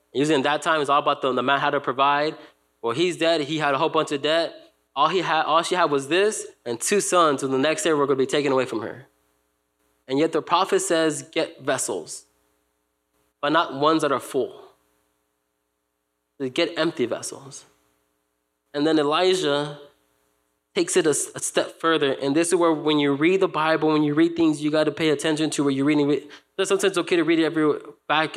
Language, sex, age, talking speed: English, male, 20-39, 220 wpm